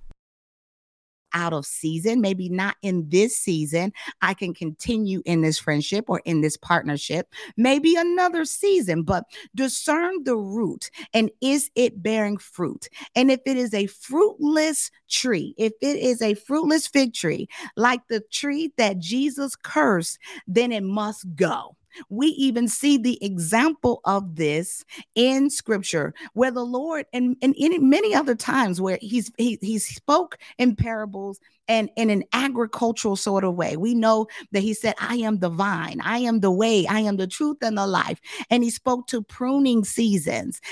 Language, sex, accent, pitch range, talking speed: English, female, American, 200-260 Hz, 165 wpm